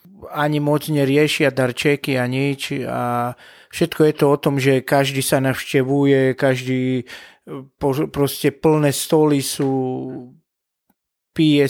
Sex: male